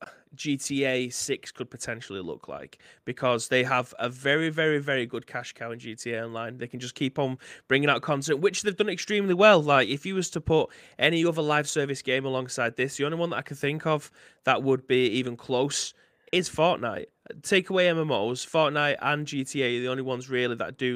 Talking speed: 210 wpm